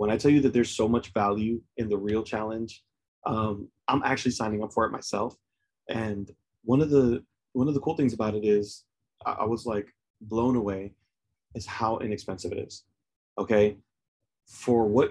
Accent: American